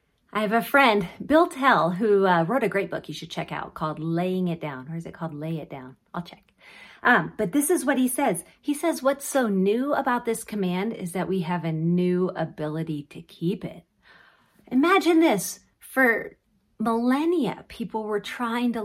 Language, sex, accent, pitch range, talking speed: English, female, American, 180-265 Hz, 195 wpm